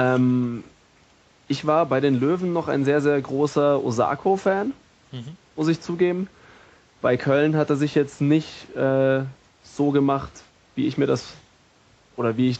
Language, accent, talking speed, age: German, German, 150 wpm, 20-39